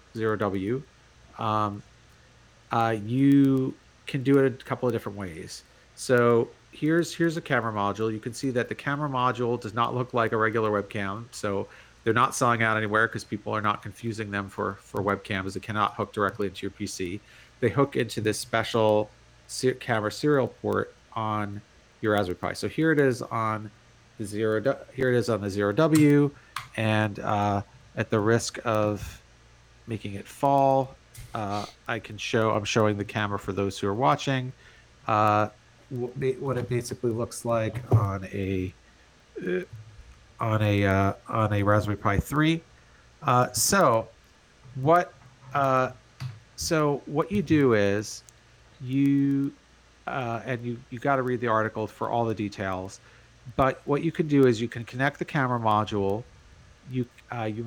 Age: 40-59